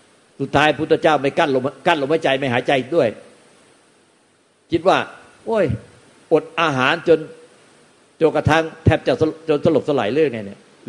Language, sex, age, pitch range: Thai, male, 60-79, 125-165 Hz